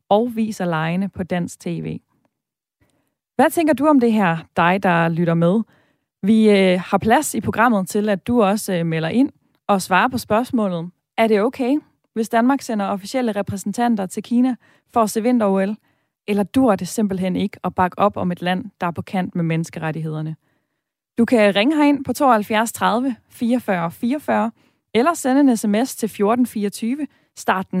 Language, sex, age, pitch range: Danish, female, 20-39, 185-235 Hz